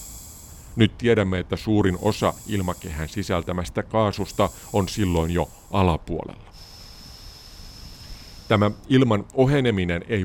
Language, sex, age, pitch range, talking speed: Finnish, male, 50-69, 90-120 Hz, 95 wpm